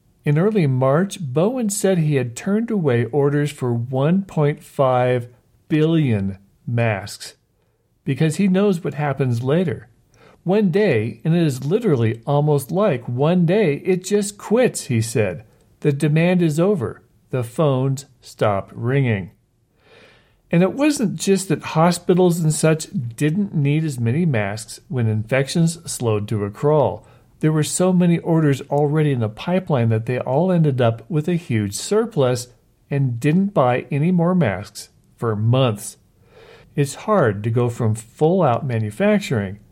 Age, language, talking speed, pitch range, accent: 50-69, English, 145 wpm, 115-165 Hz, American